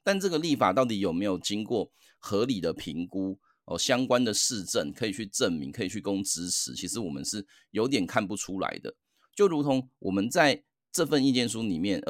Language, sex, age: Chinese, male, 30-49